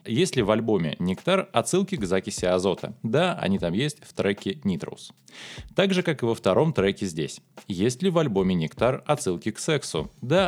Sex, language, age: male, Russian, 20-39